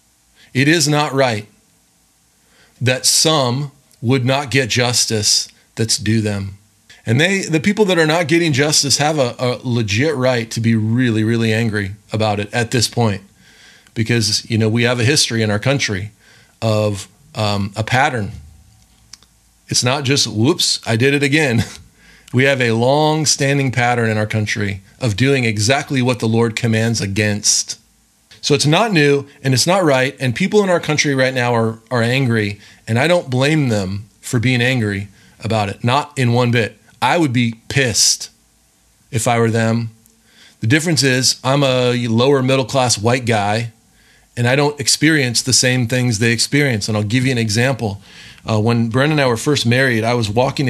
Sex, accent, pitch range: male, American, 110-135 Hz